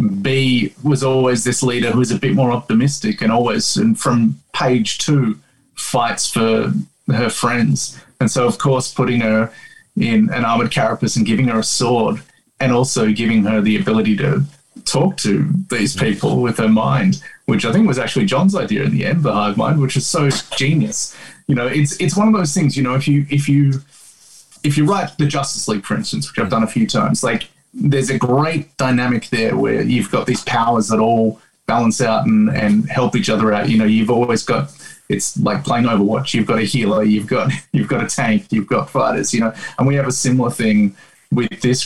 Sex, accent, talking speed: male, Australian, 210 wpm